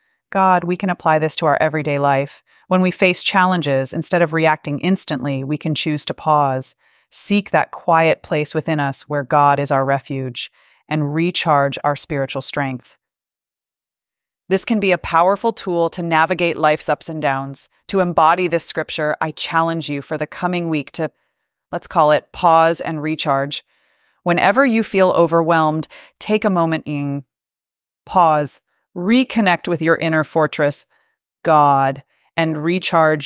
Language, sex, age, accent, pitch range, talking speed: English, female, 30-49, American, 145-170 Hz, 155 wpm